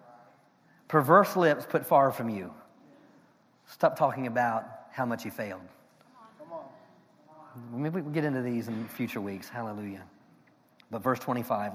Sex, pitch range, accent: male, 110-140 Hz, American